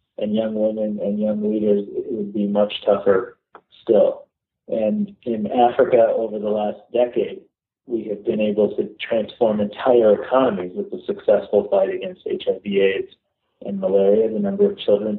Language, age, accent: English, 40-59, American